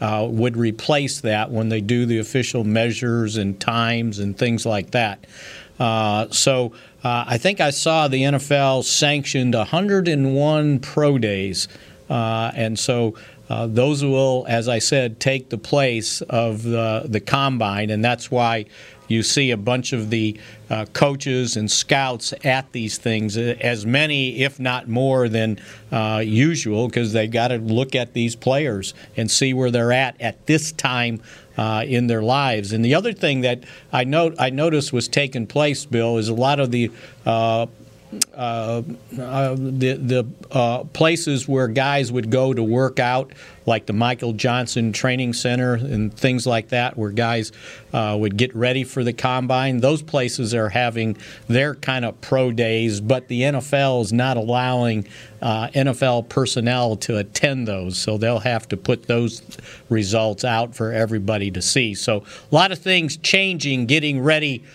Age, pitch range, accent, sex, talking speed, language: 50-69, 115-135 Hz, American, male, 170 wpm, English